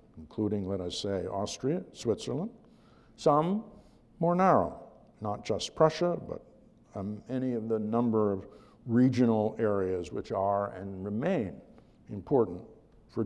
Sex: male